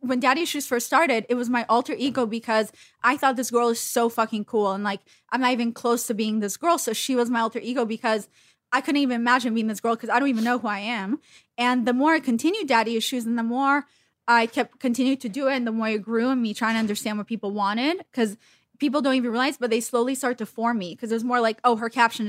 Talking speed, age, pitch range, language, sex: 270 wpm, 20-39, 220-250 Hz, English, female